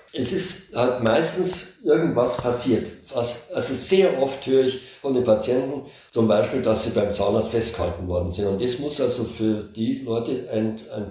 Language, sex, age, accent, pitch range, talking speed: German, male, 50-69, German, 110-145 Hz, 175 wpm